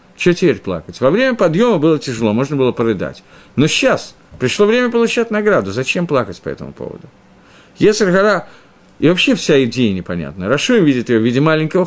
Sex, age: male, 50-69